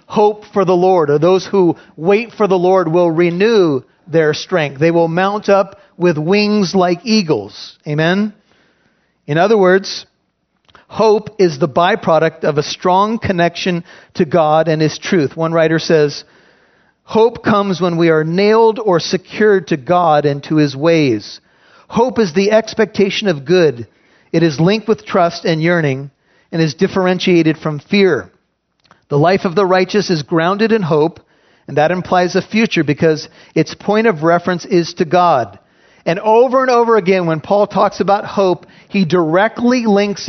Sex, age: male, 40-59